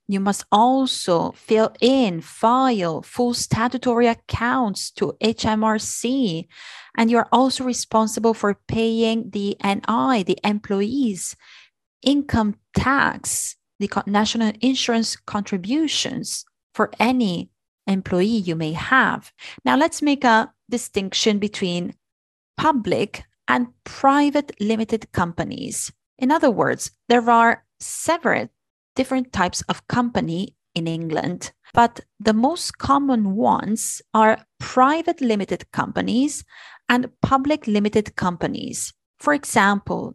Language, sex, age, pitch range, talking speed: Italian, female, 30-49, 200-255 Hz, 105 wpm